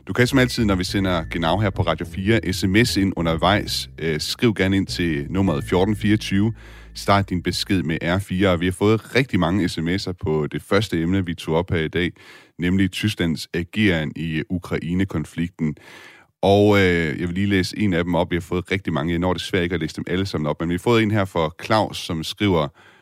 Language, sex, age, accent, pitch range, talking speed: Danish, male, 30-49, native, 80-100 Hz, 220 wpm